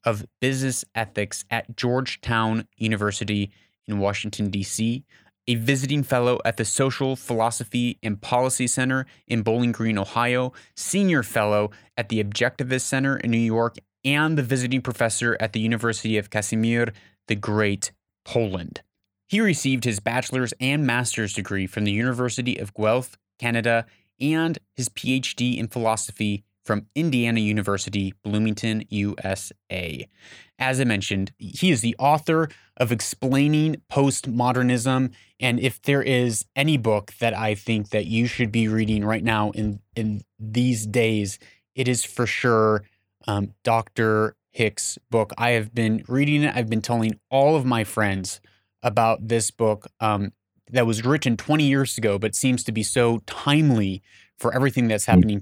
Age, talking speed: 20-39, 150 wpm